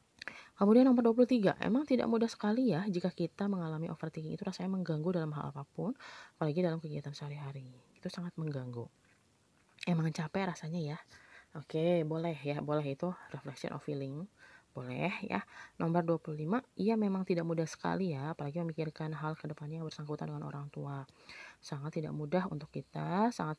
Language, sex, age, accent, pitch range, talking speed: Indonesian, female, 20-39, native, 145-185 Hz, 160 wpm